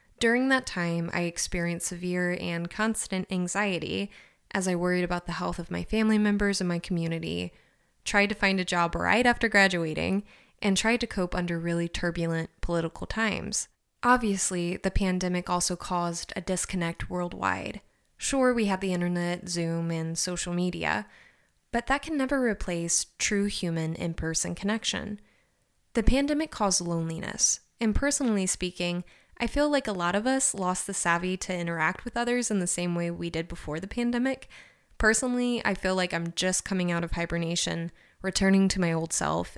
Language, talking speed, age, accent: English, 165 wpm, 20-39, American